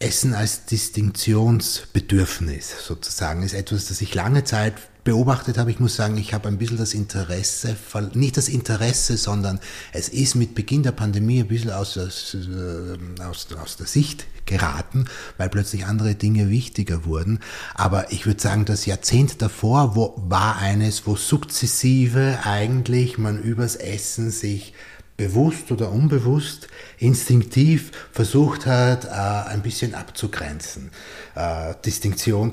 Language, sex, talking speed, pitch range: German, male, 135 wpm, 100-120 Hz